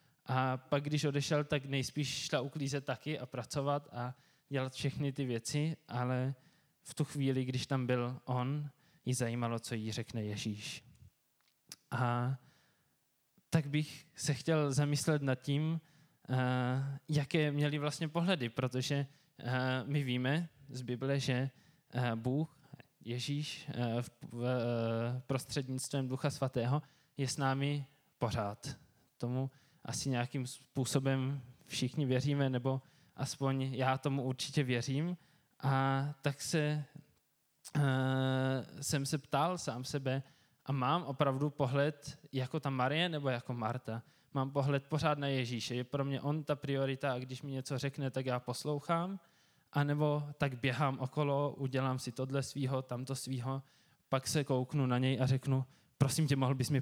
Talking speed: 135 wpm